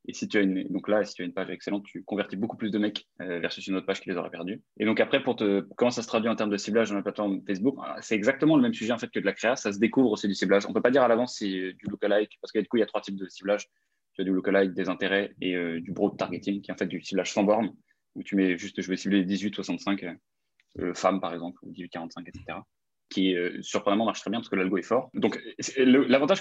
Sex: male